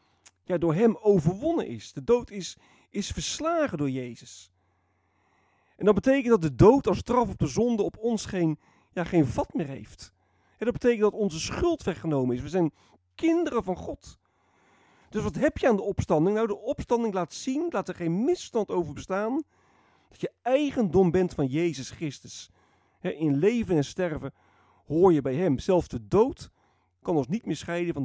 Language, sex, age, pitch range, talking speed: Dutch, male, 40-59, 115-195 Hz, 185 wpm